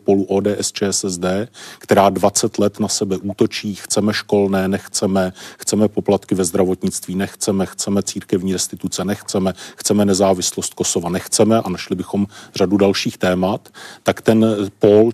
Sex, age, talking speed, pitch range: male, 40-59, 135 wpm, 100-105 Hz